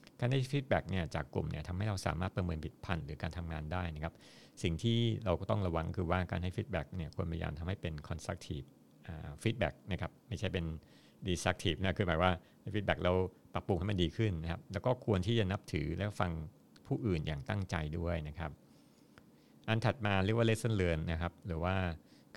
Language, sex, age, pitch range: Thai, male, 60-79, 80-100 Hz